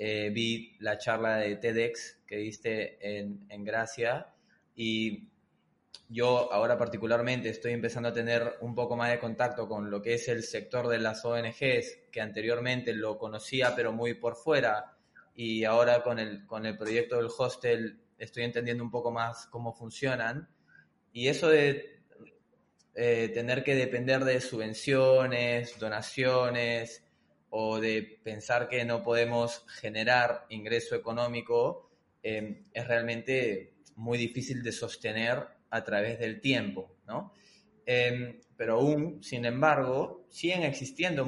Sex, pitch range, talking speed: male, 115-130 Hz, 140 wpm